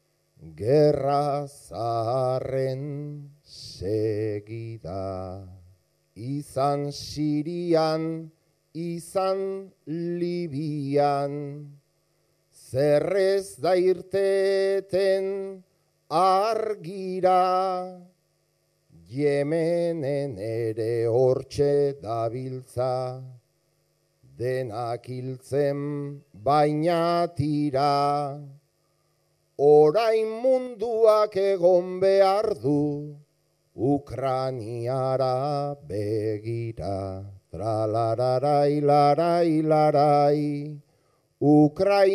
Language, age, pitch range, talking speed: Spanish, 40-59, 140-190 Hz, 45 wpm